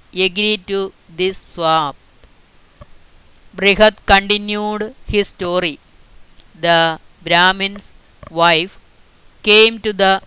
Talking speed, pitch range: 80 wpm, 170-210 Hz